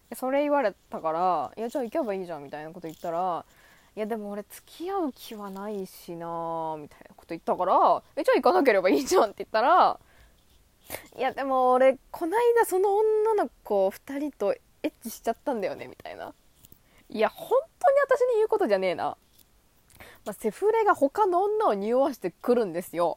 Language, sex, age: Japanese, female, 20-39